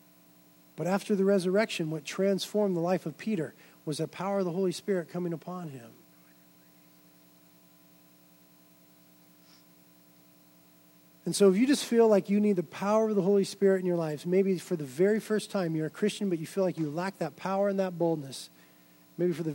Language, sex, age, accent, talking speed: English, male, 40-59, American, 185 wpm